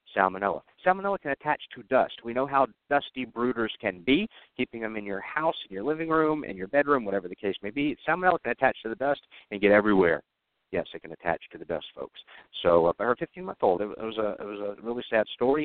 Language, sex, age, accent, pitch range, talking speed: English, male, 50-69, American, 90-140 Hz, 220 wpm